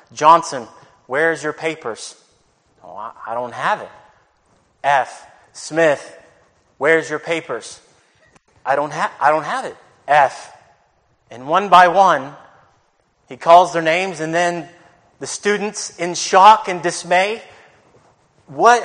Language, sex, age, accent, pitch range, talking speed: English, male, 30-49, American, 135-180 Hz, 125 wpm